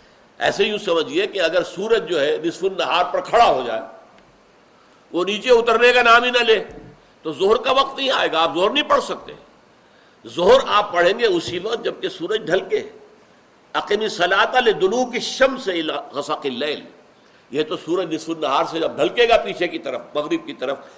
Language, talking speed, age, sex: Urdu, 185 wpm, 60-79, male